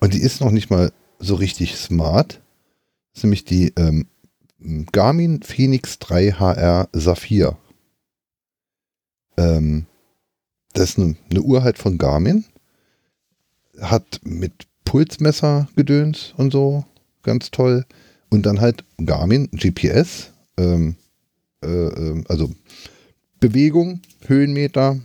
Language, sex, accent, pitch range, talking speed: German, male, German, 90-130 Hz, 110 wpm